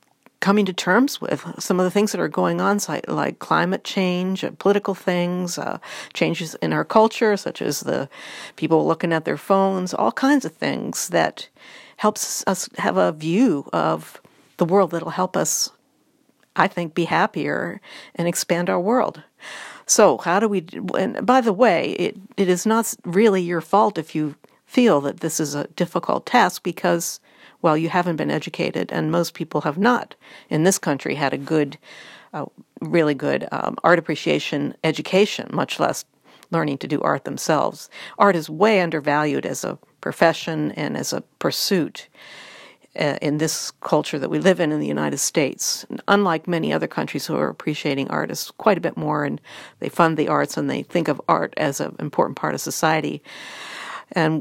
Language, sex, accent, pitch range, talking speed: English, female, American, 160-200 Hz, 180 wpm